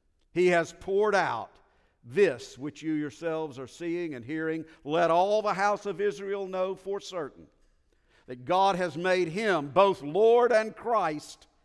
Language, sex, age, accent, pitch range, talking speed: English, male, 50-69, American, 135-210 Hz, 155 wpm